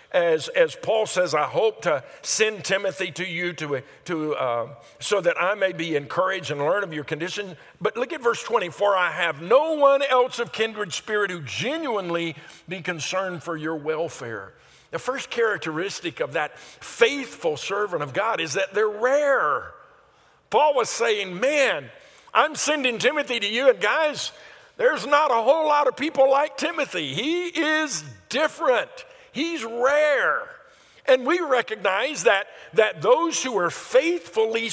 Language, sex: English, male